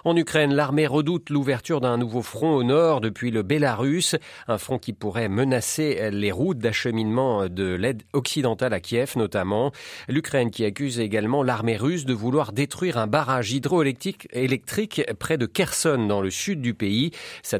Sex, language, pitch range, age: male, French, 105-145 Hz, 40-59